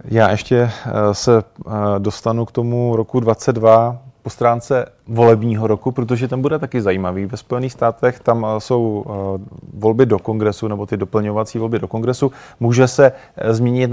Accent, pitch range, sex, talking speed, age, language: native, 110-125 Hz, male, 145 wpm, 30-49, Czech